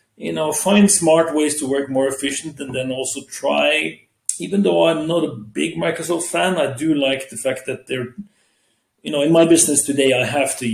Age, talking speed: 40-59, 205 wpm